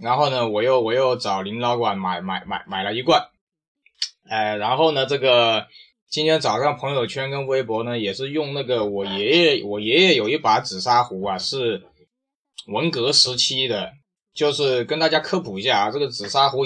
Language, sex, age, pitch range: Chinese, male, 20-39, 115-155 Hz